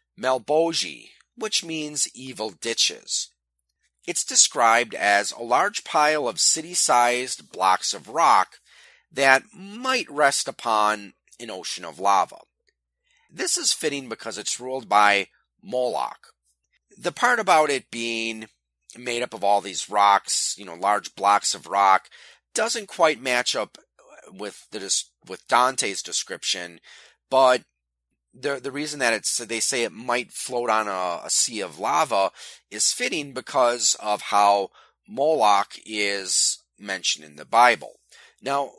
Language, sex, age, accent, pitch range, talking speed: English, male, 30-49, American, 100-150 Hz, 135 wpm